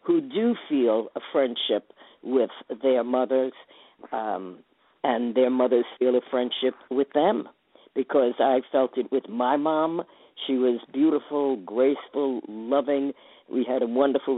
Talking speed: 140 wpm